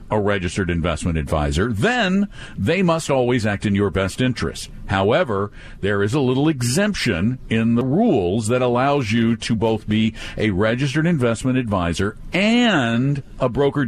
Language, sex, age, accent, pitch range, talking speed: English, male, 50-69, American, 95-130 Hz, 150 wpm